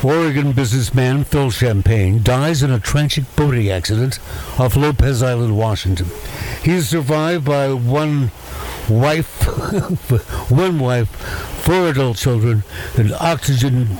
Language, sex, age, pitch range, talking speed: English, male, 60-79, 105-145 Hz, 115 wpm